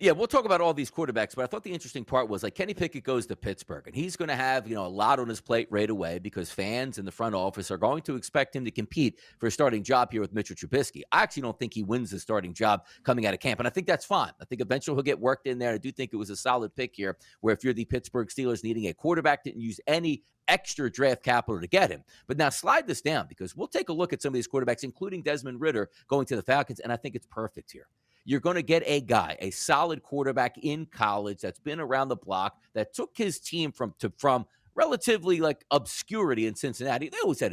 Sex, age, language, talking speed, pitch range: male, 40-59, English, 265 wpm, 115-150 Hz